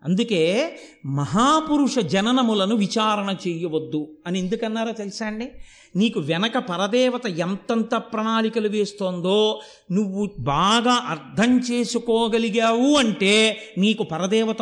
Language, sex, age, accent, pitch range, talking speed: Telugu, male, 50-69, native, 180-240 Hz, 90 wpm